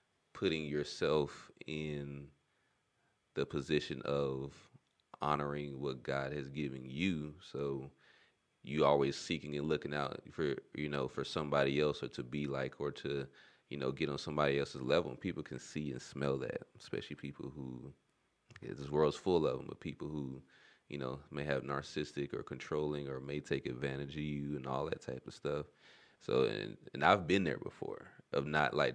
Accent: American